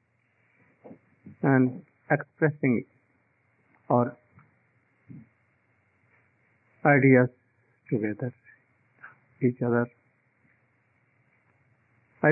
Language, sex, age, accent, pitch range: English, male, 50-69, Indian, 115-140 Hz